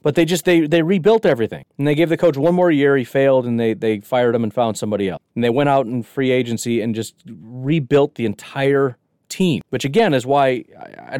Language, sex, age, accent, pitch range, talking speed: English, male, 30-49, American, 120-170 Hz, 235 wpm